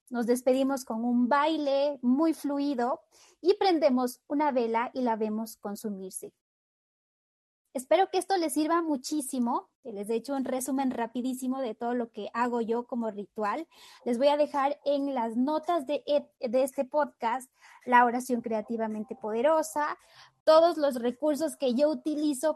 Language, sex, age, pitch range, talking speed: Spanish, female, 20-39, 235-295 Hz, 150 wpm